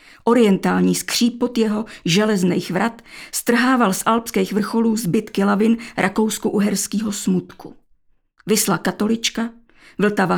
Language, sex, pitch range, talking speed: Czech, female, 200-235 Hz, 105 wpm